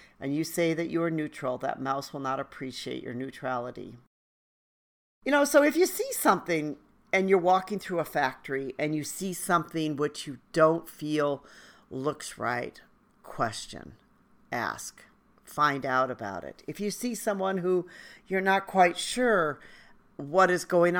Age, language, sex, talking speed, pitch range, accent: 50-69, English, female, 155 wpm, 150-200 Hz, American